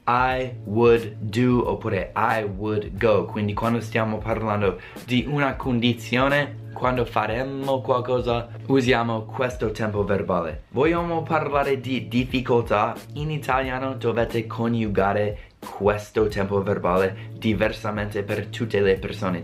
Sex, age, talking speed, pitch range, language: male, 20-39, 115 wpm, 105-130 Hz, Italian